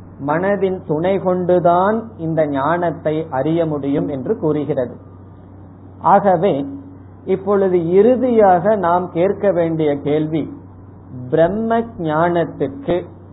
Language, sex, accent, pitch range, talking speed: Tamil, male, native, 135-180 Hz, 80 wpm